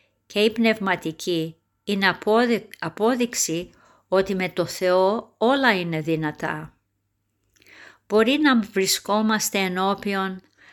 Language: Greek